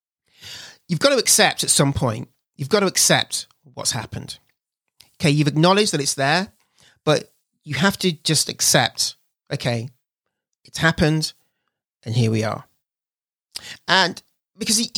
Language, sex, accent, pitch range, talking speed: English, male, British, 130-175 Hz, 135 wpm